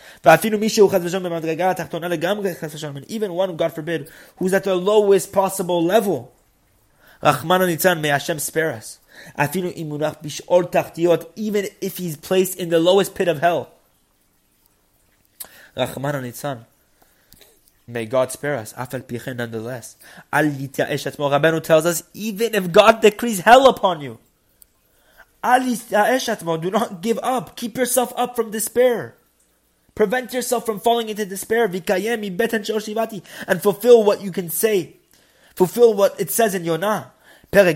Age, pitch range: 20-39, 150-210 Hz